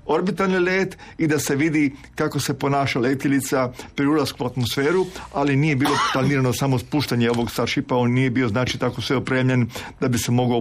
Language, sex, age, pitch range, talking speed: Croatian, male, 40-59, 125-150 Hz, 185 wpm